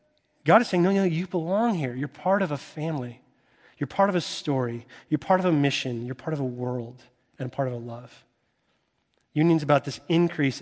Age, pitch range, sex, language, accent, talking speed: 30-49, 130-160 Hz, male, English, American, 210 wpm